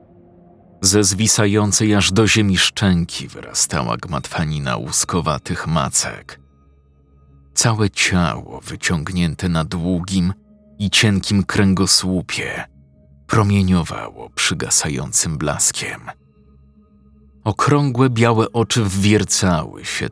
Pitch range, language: 70-105 Hz, Polish